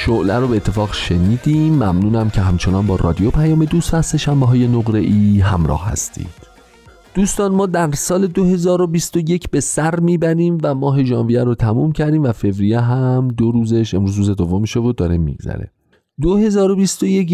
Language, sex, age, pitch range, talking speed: Persian, male, 40-59, 100-150 Hz, 155 wpm